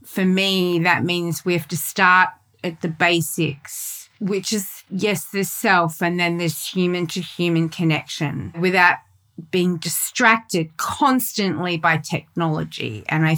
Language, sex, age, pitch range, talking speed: English, female, 30-49, 165-185 Hz, 140 wpm